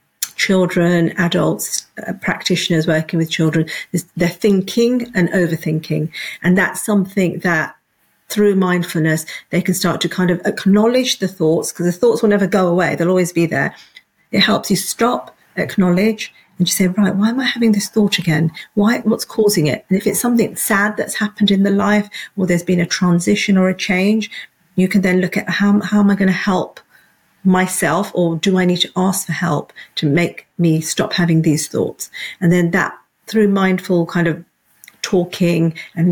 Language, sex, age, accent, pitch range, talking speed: English, female, 40-59, British, 165-195 Hz, 185 wpm